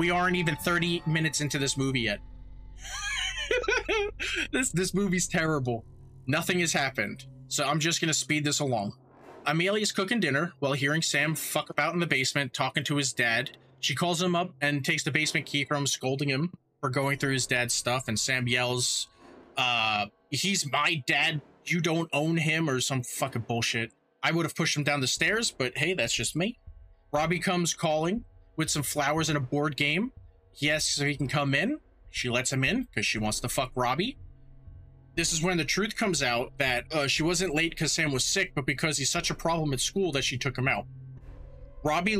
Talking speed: 200 wpm